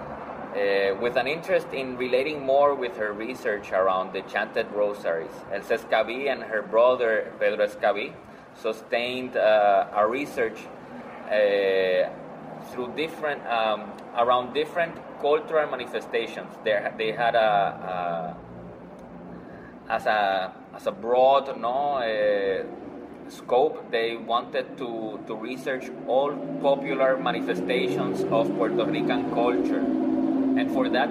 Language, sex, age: Turkish, male, 30-49